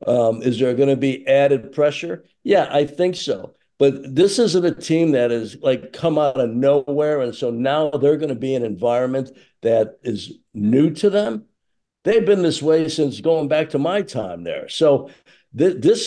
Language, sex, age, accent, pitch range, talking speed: English, male, 60-79, American, 130-160 Hz, 190 wpm